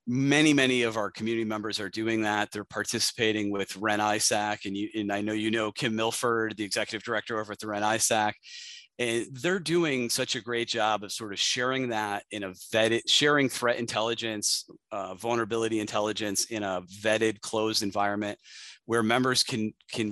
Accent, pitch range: American, 105-115 Hz